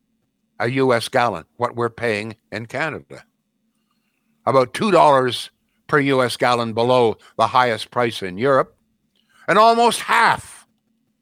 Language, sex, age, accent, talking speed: English, male, 60-79, American, 120 wpm